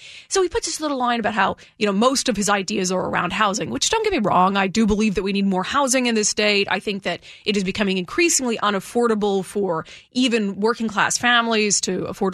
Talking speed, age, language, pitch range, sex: 235 wpm, 30-49, English, 210-280 Hz, female